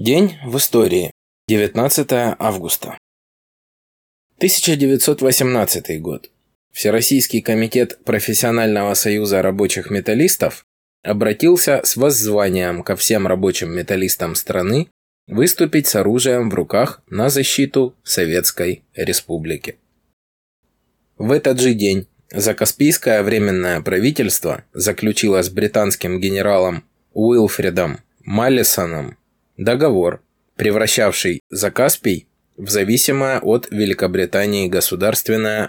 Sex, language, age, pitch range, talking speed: male, Russian, 20-39, 95-130 Hz, 85 wpm